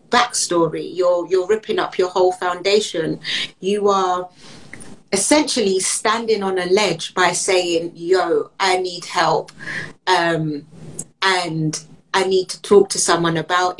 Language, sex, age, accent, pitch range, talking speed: English, female, 30-49, British, 180-225 Hz, 130 wpm